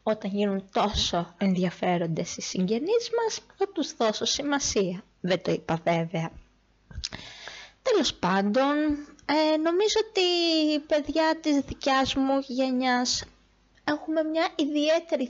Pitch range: 195-280 Hz